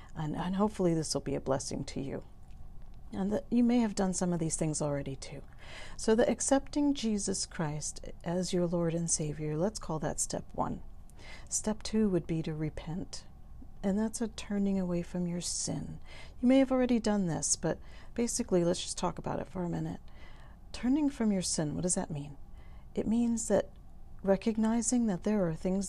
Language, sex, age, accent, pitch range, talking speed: English, female, 50-69, American, 150-195 Hz, 190 wpm